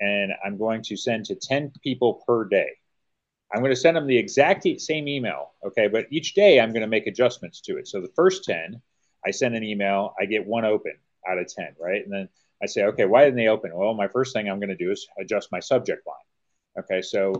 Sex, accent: male, American